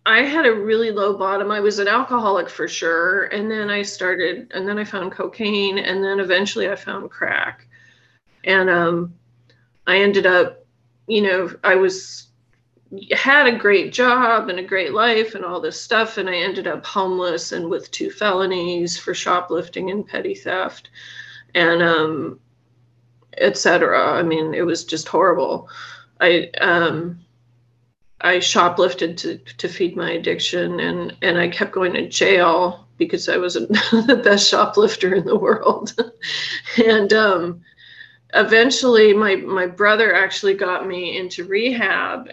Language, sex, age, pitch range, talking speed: English, female, 30-49, 175-220 Hz, 155 wpm